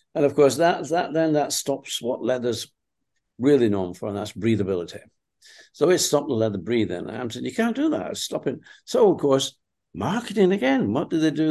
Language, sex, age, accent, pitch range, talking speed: English, male, 60-79, British, 100-135 Hz, 200 wpm